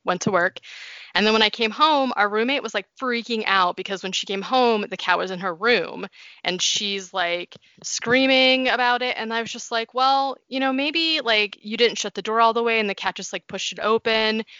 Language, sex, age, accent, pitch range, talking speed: English, female, 20-39, American, 185-225 Hz, 240 wpm